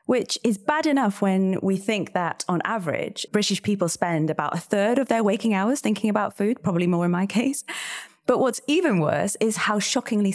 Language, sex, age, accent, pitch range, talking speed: English, female, 30-49, British, 165-225 Hz, 195 wpm